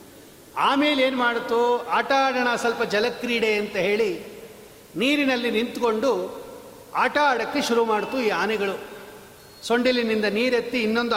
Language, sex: Kannada, male